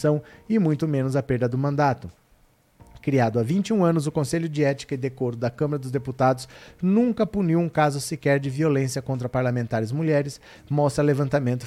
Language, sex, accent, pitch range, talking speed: Portuguese, male, Brazilian, 125-155 Hz, 170 wpm